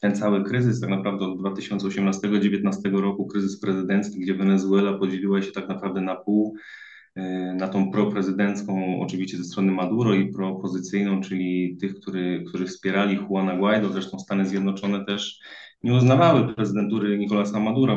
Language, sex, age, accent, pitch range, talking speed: Polish, male, 20-39, native, 95-110 Hz, 145 wpm